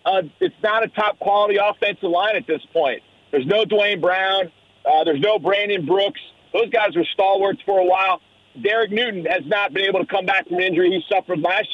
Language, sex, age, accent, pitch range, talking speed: English, male, 40-59, American, 185-225 Hz, 210 wpm